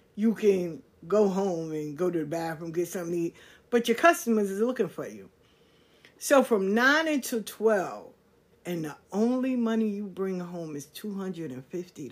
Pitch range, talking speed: 180-260 Hz, 170 wpm